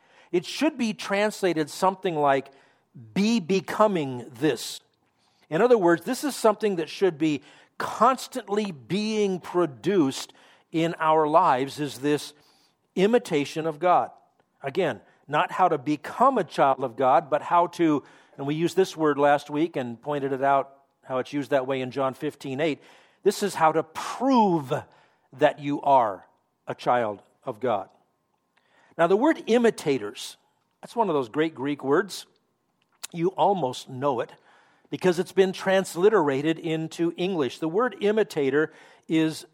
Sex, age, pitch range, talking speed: male, 50-69, 145-190 Hz, 150 wpm